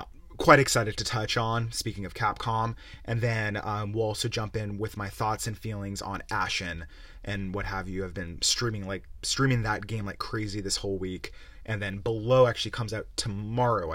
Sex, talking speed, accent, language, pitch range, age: male, 195 wpm, American, English, 100-120 Hz, 30-49